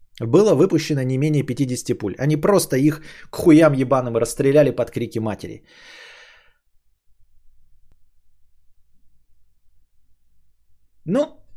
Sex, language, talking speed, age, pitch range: male, Bulgarian, 90 wpm, 20-39, 120-180 Hz